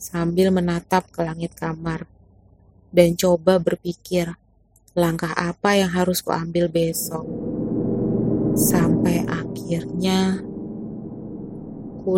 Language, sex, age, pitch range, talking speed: Indonesian, female, 30-49, 165-185 Hz, 85 wpm